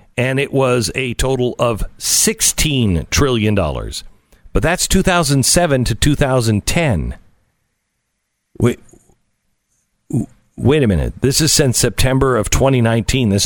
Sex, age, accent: male, 50-69, American